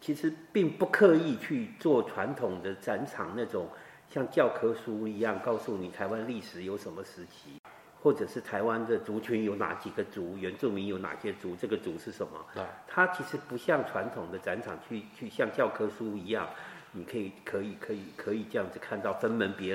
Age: 50-69